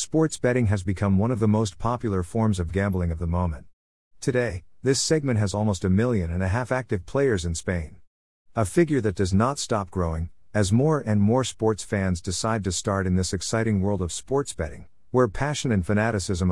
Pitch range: 90-115 Hz